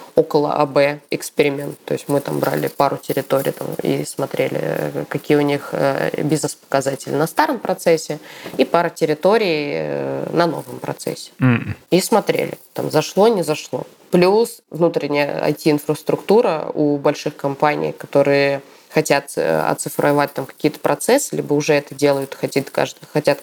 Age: 20-39